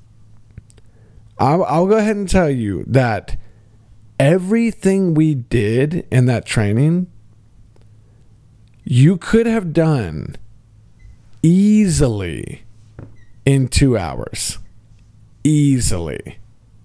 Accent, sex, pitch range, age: American, male, 110-165 Hz, 40-59